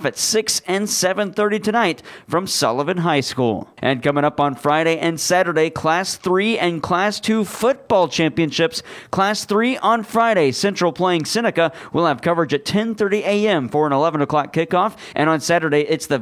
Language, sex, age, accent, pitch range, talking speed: English, male, 40-59, American, 150-205 Hz, 175 wpm